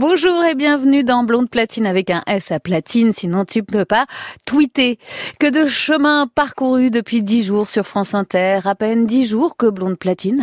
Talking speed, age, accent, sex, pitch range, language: 195 wpm, 30-49, French, female, 190-260 Hz, French